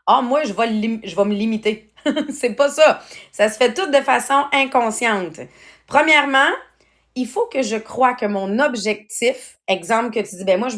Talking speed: 210 wpm